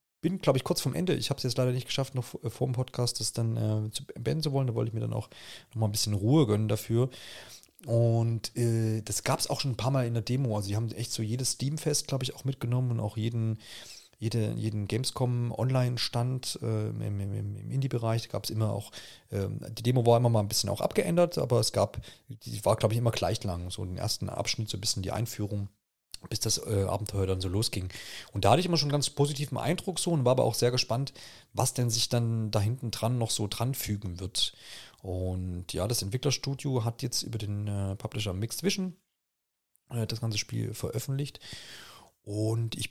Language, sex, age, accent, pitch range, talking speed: German, male, 40-59, German, 105-130 Hz, 225 wpm